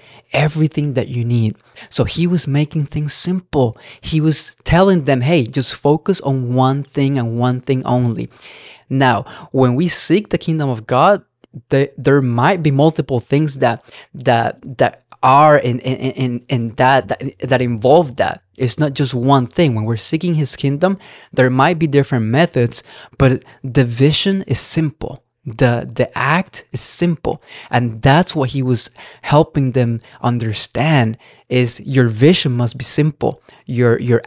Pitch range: 125-150 Hz